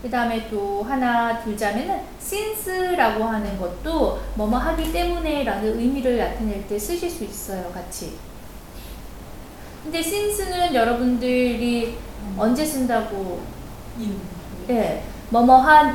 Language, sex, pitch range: Korean, female, 205-285 Hz